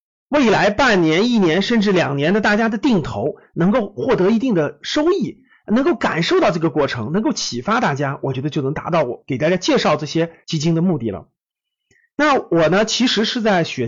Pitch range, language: 170-255 Hz, Chinese